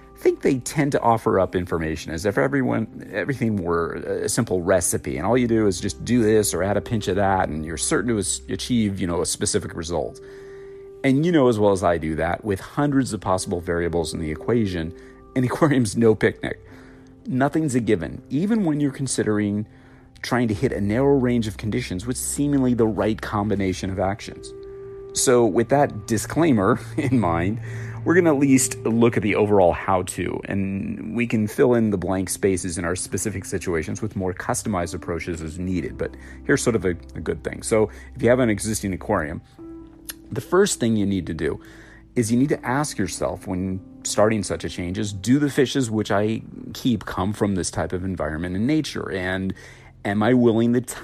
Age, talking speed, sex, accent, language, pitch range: 40-59, 200 wpm, male, American, English, 95-125 Hz